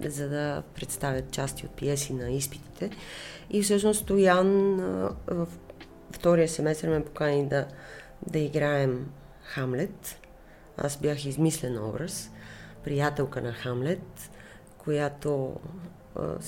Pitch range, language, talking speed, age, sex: 135-170 Hz, Bulgarian, 100 wpm, 30-49, female